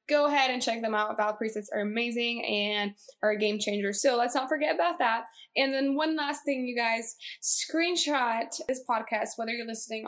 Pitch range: 215-260 Hz